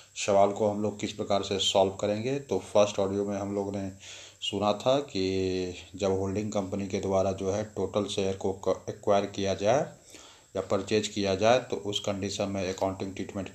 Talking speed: 185 wpm